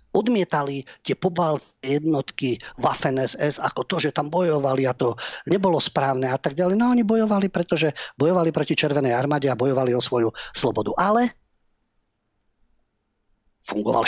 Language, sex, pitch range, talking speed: Slovak, male, 125-165 Hz, 130 wpm